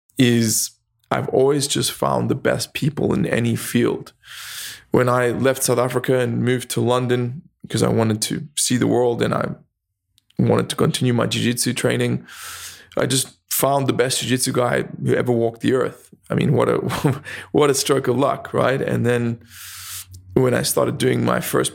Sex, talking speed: male, 175 wpm